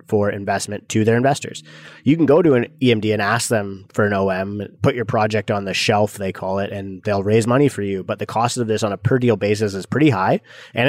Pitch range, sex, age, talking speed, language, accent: 100-115 Hz, male, 20-39, 255 wpm, English, American